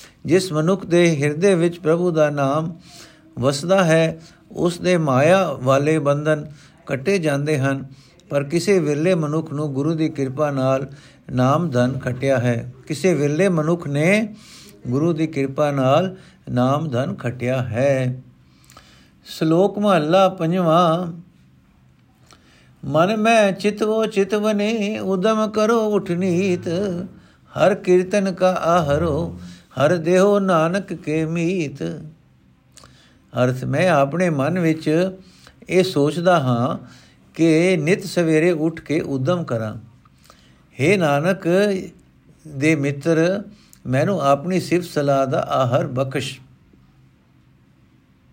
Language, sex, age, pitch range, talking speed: Punjabi, male, 60-79, 135-185 Hz, 110 wpm